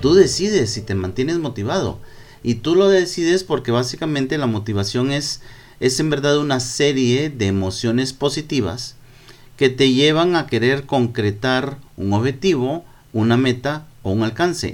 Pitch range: 115-145 Hz